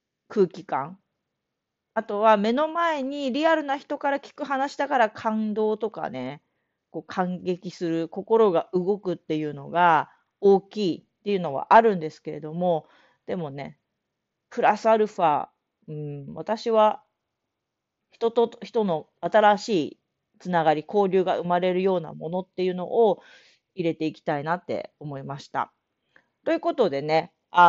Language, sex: Japanese, female